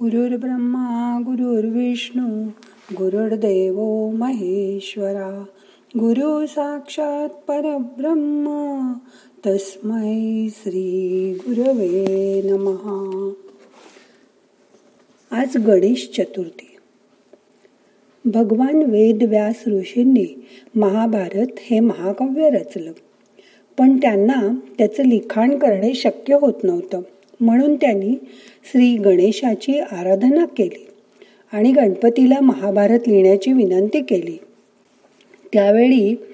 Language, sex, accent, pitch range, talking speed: Marathi, female, native, 195-250 Hz, 70 wpm